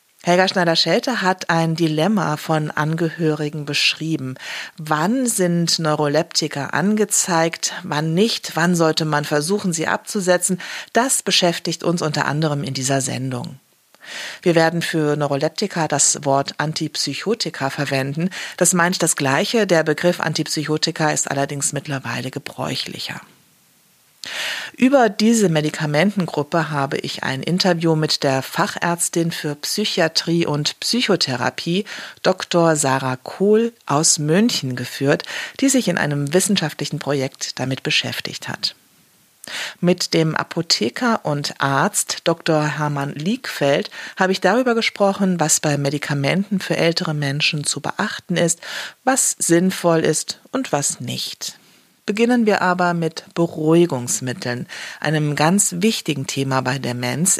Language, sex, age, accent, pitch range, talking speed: German, female, 40-59, German, 145-185 Hz, 120 wpm